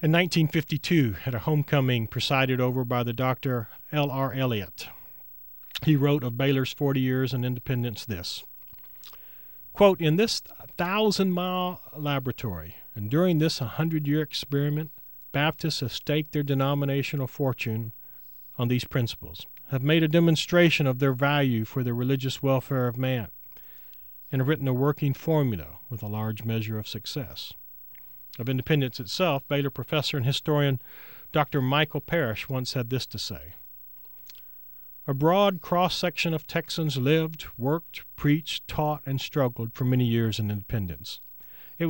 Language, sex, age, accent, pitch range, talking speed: English, male, 40-59, American, 120-155 Hz, 145 wpm